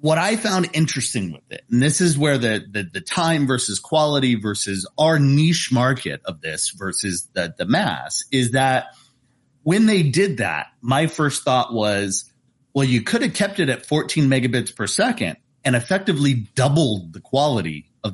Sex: male